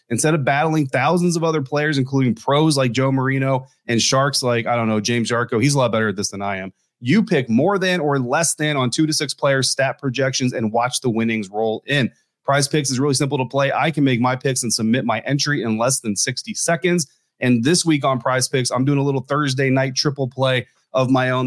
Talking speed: 245 wpm